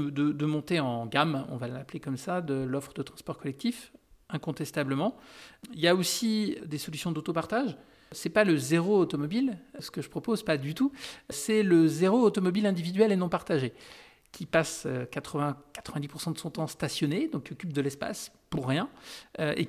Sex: male